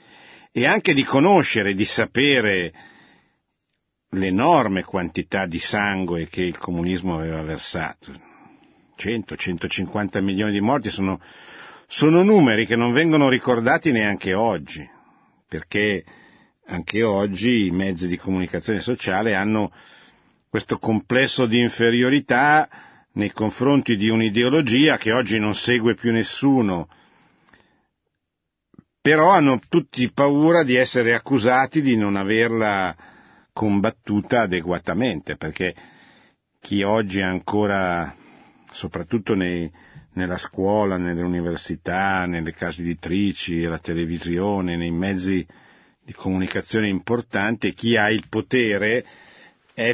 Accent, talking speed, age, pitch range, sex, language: native, 105 wpm, 50-69, 90-120 Hz, male, Italian